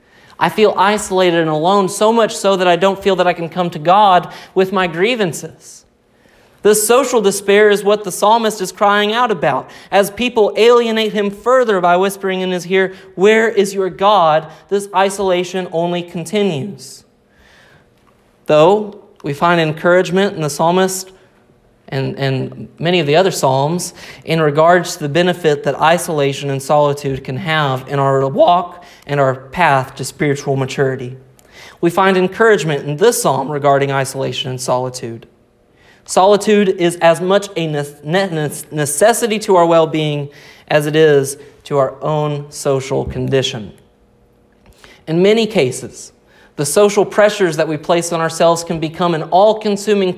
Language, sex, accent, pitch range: English, male, American, 145-195 Hz